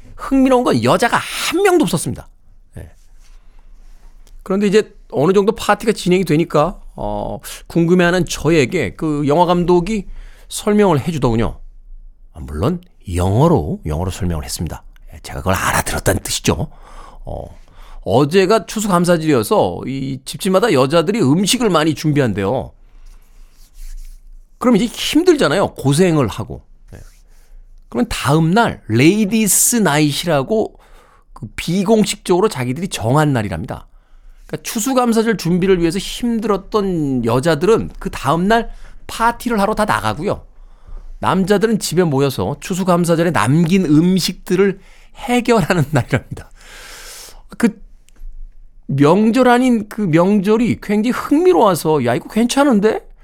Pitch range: 145-220 Hz